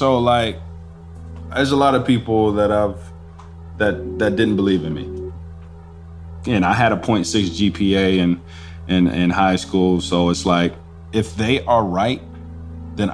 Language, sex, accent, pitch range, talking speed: English, male, American, 85-110 Hz, 155 wpm